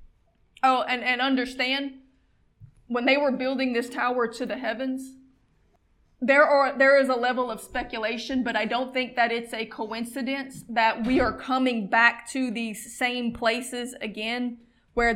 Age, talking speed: 20-39, 160 wpm